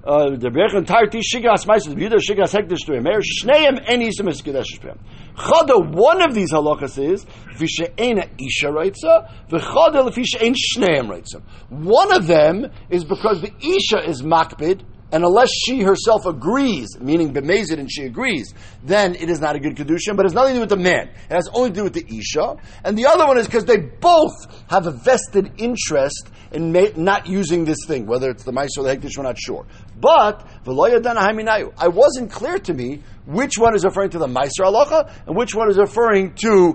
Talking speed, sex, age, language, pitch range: 200 wpm, male, 50-69, English, 155-240 Hz